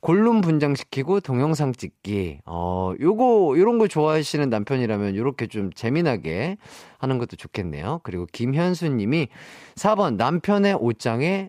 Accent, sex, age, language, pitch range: native, male, 40-59, Korean, 115-185 Hz